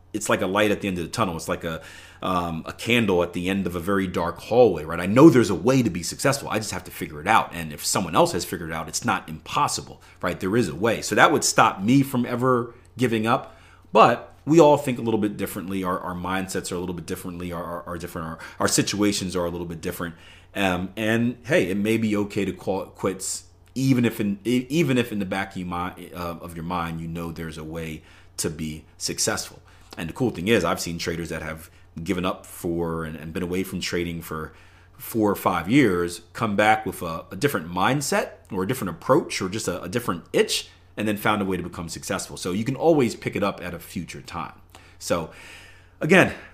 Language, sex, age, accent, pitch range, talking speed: English, male, 30-49, American, 85-105 Hz, 240 wpm